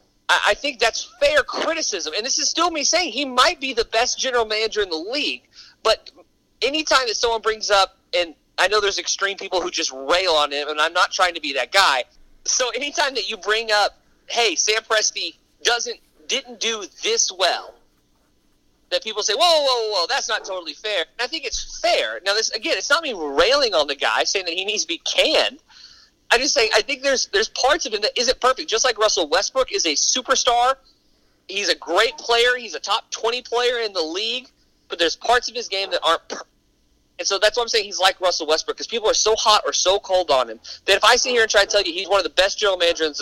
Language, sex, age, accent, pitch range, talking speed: English, male, 30-49, American, 190-285 Hz, 235 wpm